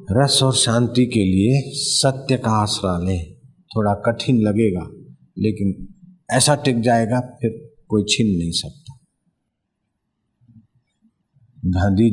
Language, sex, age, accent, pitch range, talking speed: Hindi, male, 50-69, native, 95-130 Hz, 110 wpm